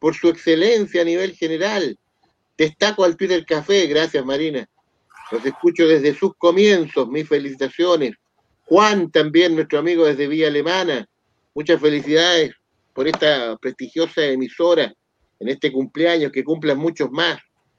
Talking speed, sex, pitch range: 130 wpm, male, 135-170 Hz